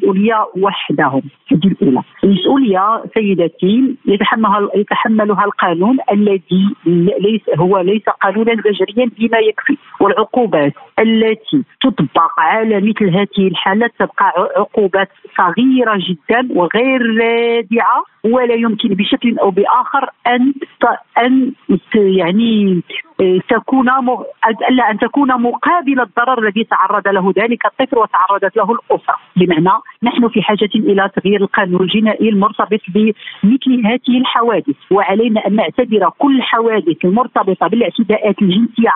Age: 50-69